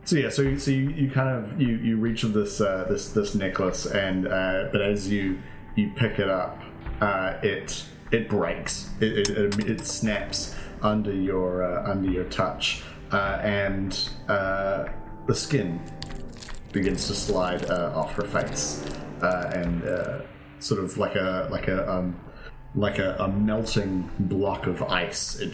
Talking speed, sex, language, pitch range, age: 165 wpm, male, English, 90-105 Hz, 30-49